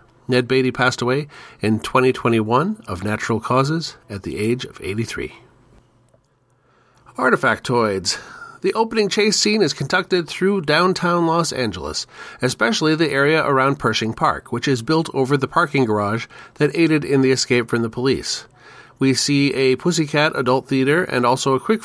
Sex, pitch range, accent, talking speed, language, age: male, 120-145 Hz, American, 155 wpm, English, 40-59